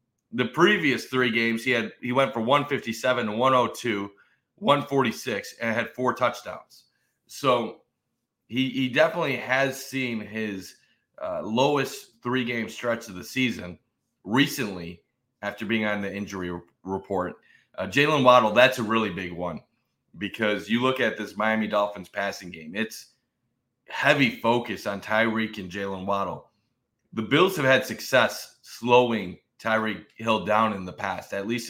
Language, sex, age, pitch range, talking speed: English, male, 30-49, 100-120 Hz, 150 wpm